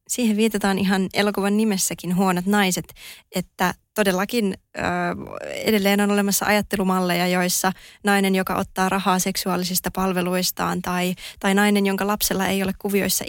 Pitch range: 180-205 Hz